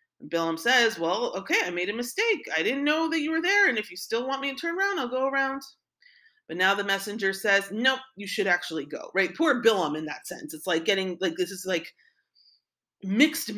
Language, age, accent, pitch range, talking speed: English, 30-49, American, 180-265 Hz, 225 wpm